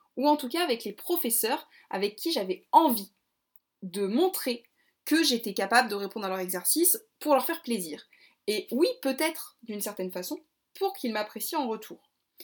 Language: French